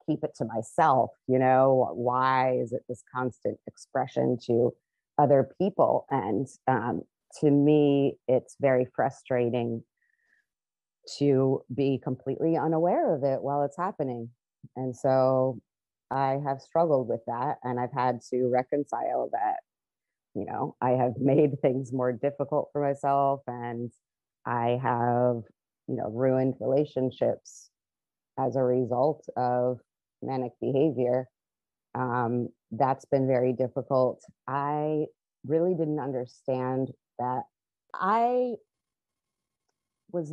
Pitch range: 125-145 Hz